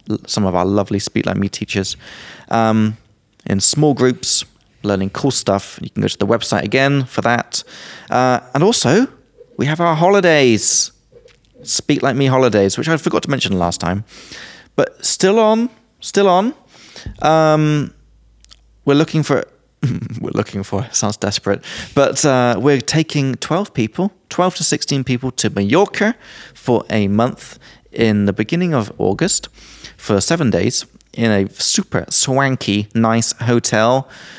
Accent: British